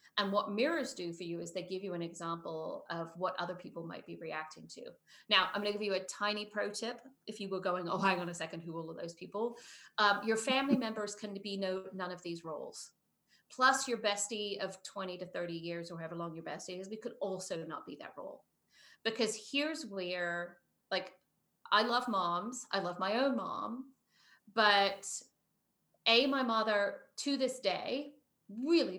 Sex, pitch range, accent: female, 180-235 Hz, American